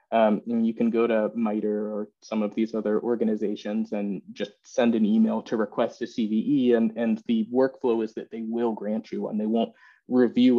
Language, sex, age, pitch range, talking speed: English, male, 20-39, 105-140 Hz, 205 wpm